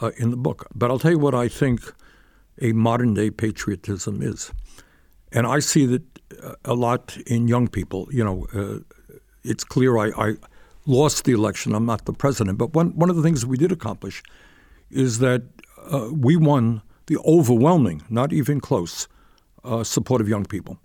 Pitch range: 105-140 Hz